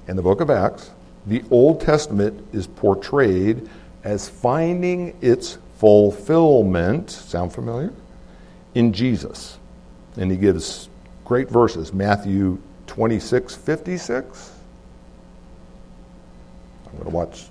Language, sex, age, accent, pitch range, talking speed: English, male, 60-79, American, 100-140 Hz, 105 wpm